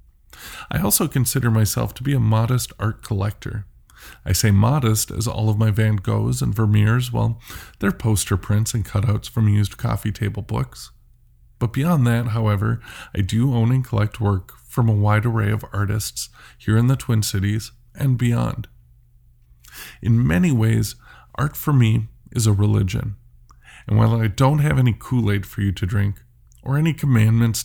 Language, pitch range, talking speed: English, 100-120 Hz, 170 wpm